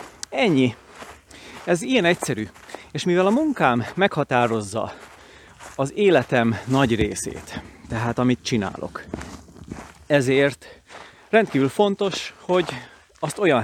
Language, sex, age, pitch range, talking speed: Hungarian, male, 30-49, 115-150 Hz, 95 wpm